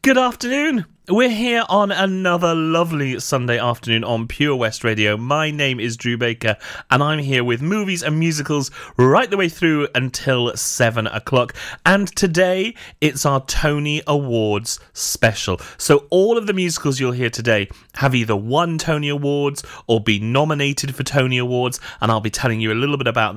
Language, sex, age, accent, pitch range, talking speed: English, male, 30-49, British, 115-165 Hz, 170 wpm